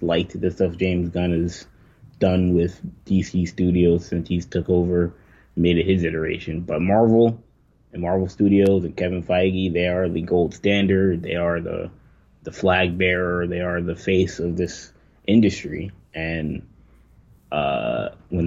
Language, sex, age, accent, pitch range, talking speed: English, male, 20-39, American, 85-95 Hz, 155 wpm